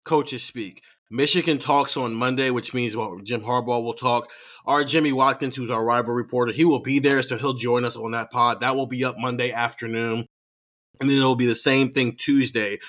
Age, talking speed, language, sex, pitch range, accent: 30-49, 205 wpm, English, male, 115-140 Hz, American